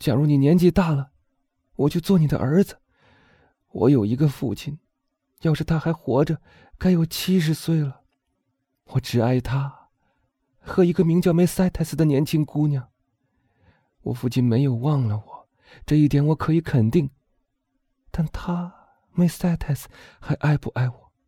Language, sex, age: Chinese, male, 30-49